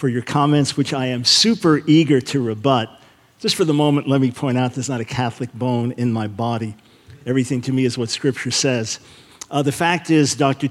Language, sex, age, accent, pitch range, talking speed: English, male, 50-69, American, 130-165 Hz, 215 wpm